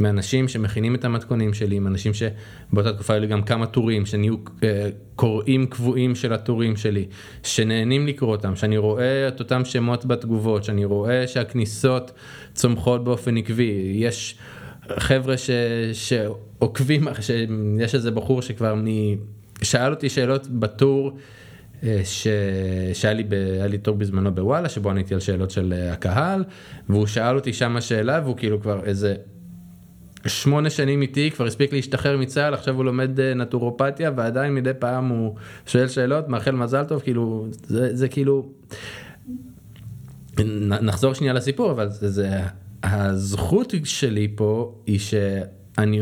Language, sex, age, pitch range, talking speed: Hebrew, male, 20-39, 105-130 Hz, 135 wpm